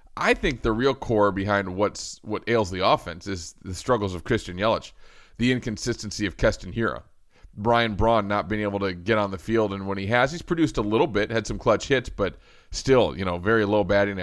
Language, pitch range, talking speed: English, 100-125 Hz, 220 wpm